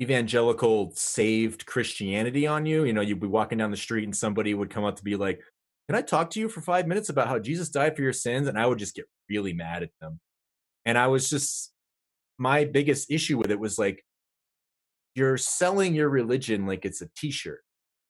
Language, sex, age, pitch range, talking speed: English, male, 30-49, 95-135 Hz, 210 wpm